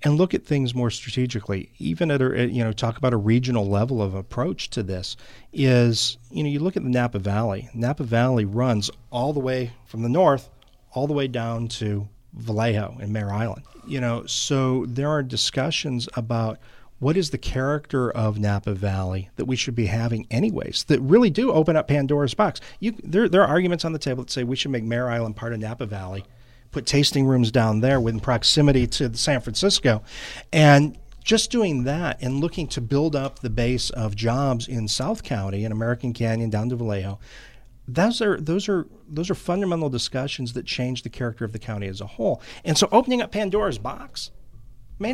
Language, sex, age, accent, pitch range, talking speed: English, male, 40-59, American, 115-165 Hz, 195 wpm